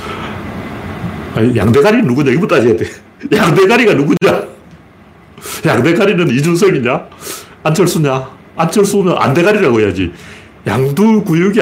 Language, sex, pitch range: Korean, male, 110-160 Hz